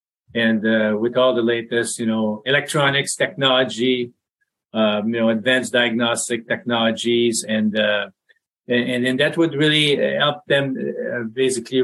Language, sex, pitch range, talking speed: English, male, 115-140 Hz, 130 wpm